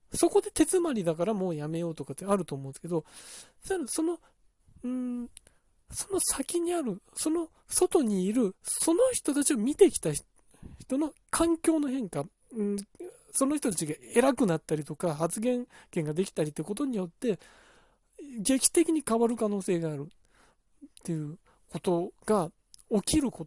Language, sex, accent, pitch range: Japanese, male, native, 165-275 Hz